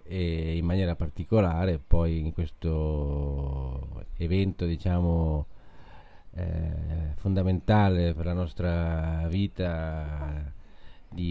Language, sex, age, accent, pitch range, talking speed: Italian, male, 40-59, native, 85-95 Hz, 85 wpm